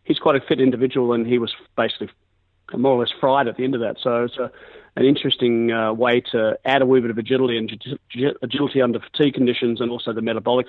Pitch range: 115-130 Hz